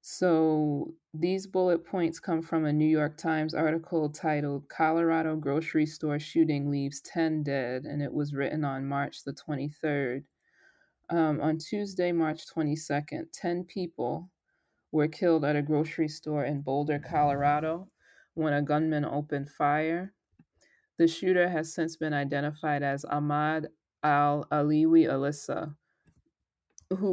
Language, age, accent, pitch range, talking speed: English, 20-39, American, 145-165 Hz, 130 wpm